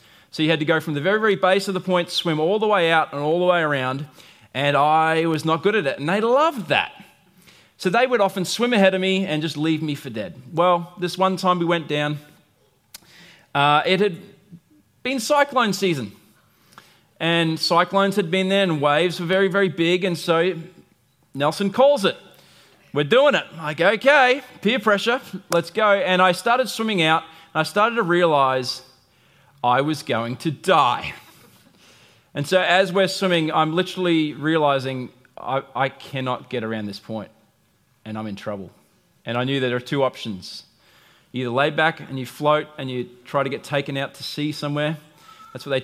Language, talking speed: English, 195 wpm